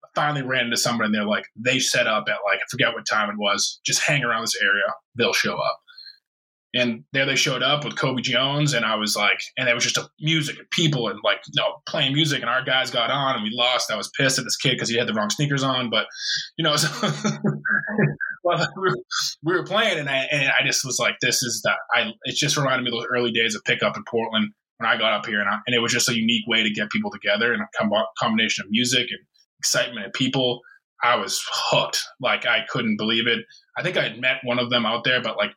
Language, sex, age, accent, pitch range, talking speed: English, male, 20-39, American, 115-140 Hz, 260 wpm